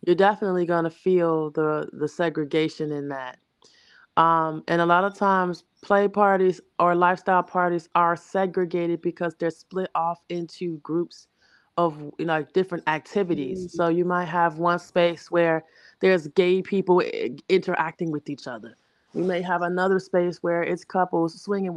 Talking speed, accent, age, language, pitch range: 155 wpm, American, 20-39, English, 155-180 Hz